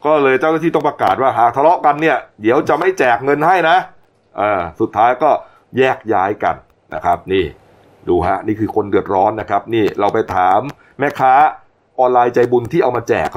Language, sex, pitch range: Thai, male, 100-145 Hz